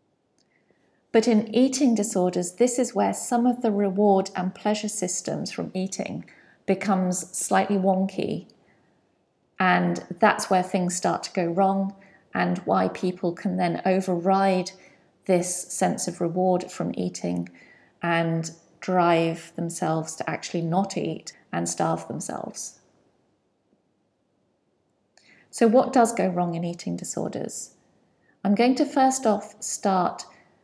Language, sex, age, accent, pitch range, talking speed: English, female, 40-59, British, 180-210 Hz, 125 wpm